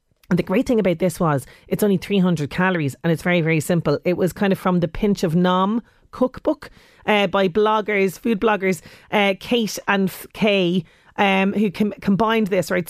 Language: English